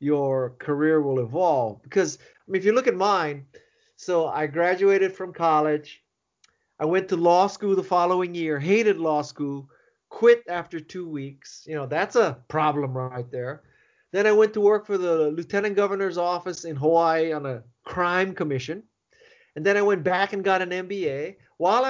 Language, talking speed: English, 180 wpm